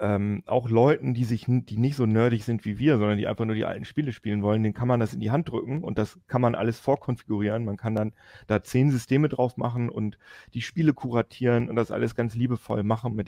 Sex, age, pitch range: male, 40-59, 105-120 Hz